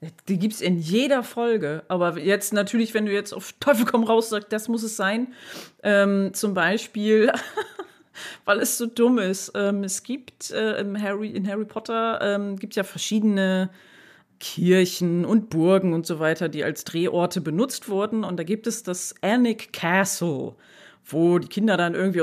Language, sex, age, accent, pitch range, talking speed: German, female, 30-49, German, 180-235 Hz, 175 wpm